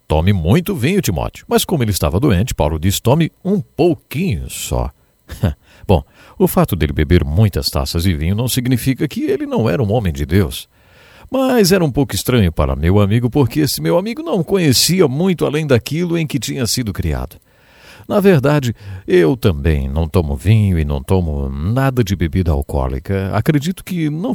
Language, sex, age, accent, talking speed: English, male, 50-69, Brazilian, 180 wpm